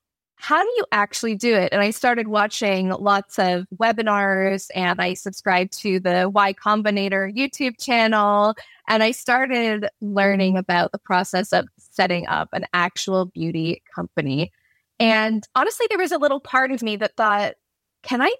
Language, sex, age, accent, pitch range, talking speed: English, female, 20-39, American, 190-240 Hz, 160 wpm